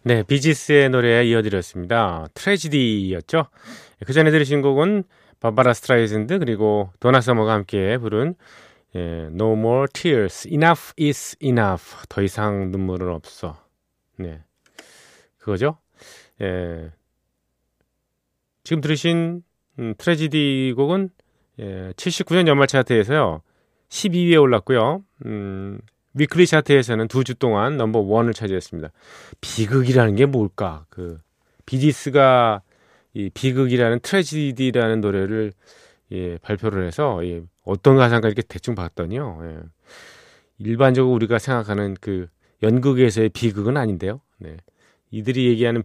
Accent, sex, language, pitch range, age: native, male, Korean, 100-140 Hz, 30-49